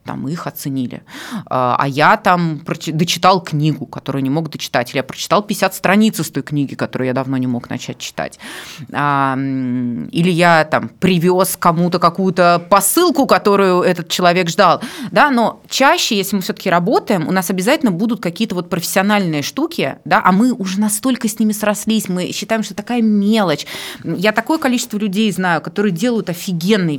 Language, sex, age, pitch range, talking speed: Russian, female, 20-39, 155-215 Hz, 165 wpm